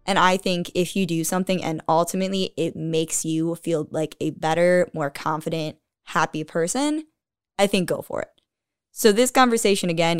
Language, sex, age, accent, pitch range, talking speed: English, female, 10-29, American, 160-200 Hz, 170 wpm